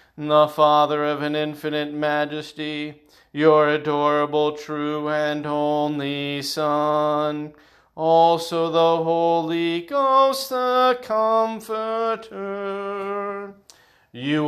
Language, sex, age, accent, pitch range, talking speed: English, male, 40-59, American, 150-195 Hz, 80 wpm